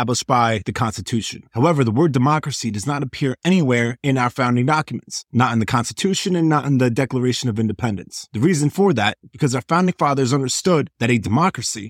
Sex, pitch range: male, 115-145 Hz